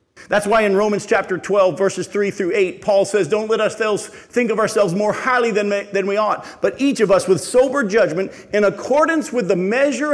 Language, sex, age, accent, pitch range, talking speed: English, male, 50-69, American, 175-220 Hz, 205 wpm